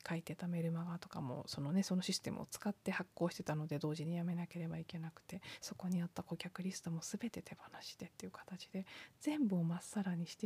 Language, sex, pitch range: Japanese, female, 170-225 Hz